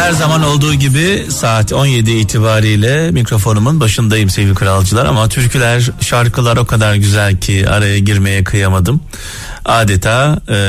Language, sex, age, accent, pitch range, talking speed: Turkish, male, 40-59, native, 95-130 Hz, 130 wpm